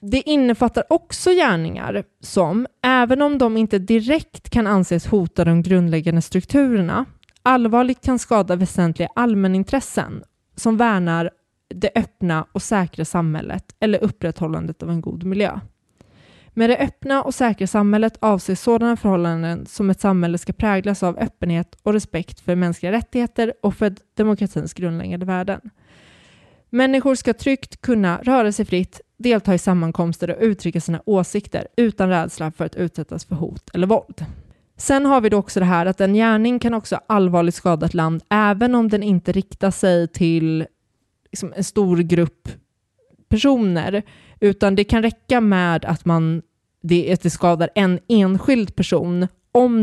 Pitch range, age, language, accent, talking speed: 170-225 Hz, 20-39, Swedish, native, 150 wpm